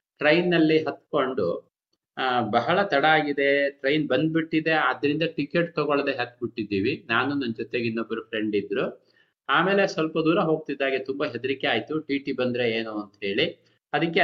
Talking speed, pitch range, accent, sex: 135 wpm, 130-165 Hz, native, male